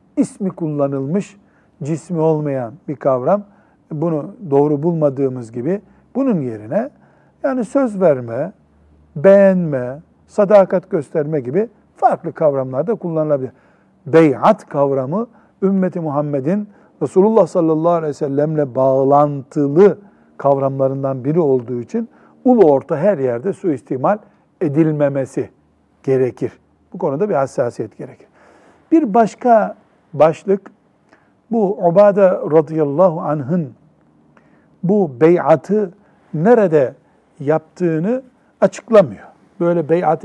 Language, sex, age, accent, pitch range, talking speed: Turkish, male, 60-79, native, 145-200 Hz, 95 wpm